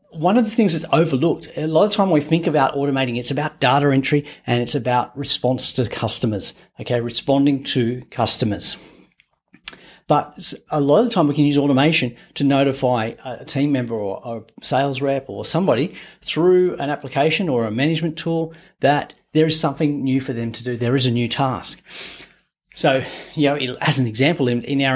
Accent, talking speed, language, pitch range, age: Australian, 190 wpm, English, 125-150 Hz, 40-59